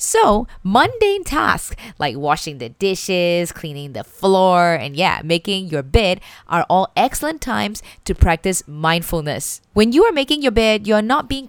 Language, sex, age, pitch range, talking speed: English, female, 20-39, 170-235 Hz, 160 wpm